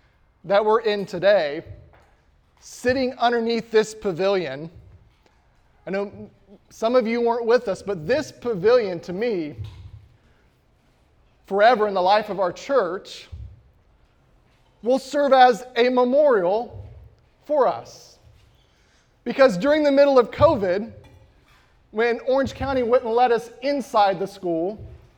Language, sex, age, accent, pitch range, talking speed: English, male, 20-39, American, 165-235 Hz, 120 wpm